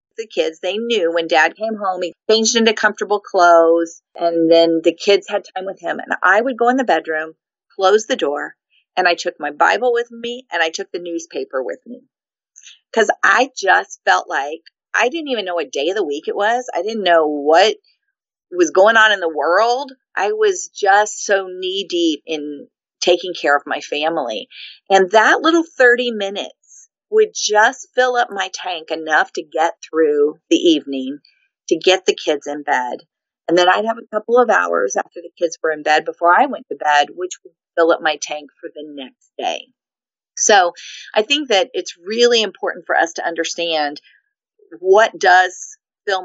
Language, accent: English, American